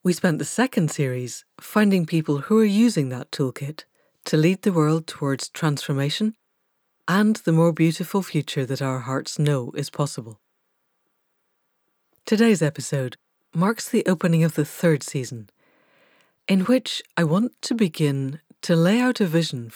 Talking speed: 150 wpm